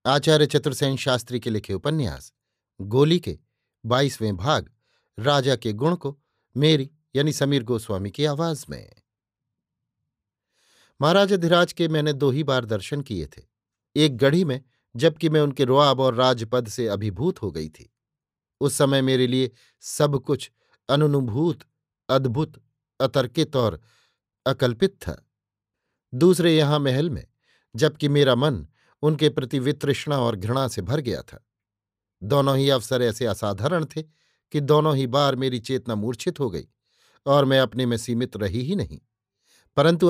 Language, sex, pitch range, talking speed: Hindi, male, 115-145 Hz, 145 wpm